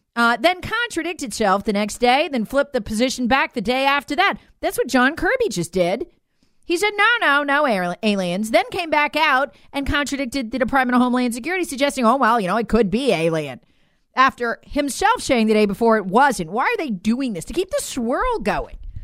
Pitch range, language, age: 215-325 Hz, English, 40-59